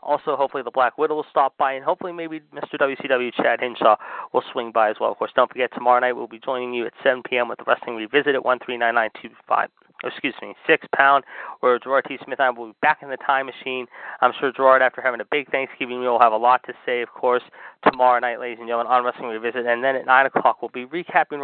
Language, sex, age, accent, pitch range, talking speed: English, male, 30-49, American, 125-155 Hz, 250 wpm